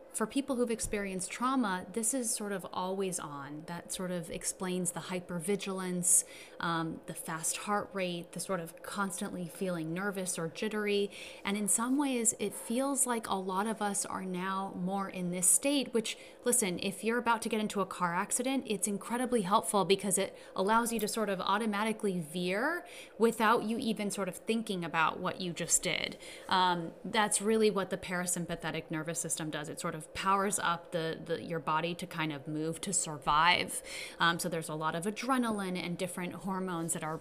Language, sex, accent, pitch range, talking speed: English, female, American, 170-215 Hz, 185 wpm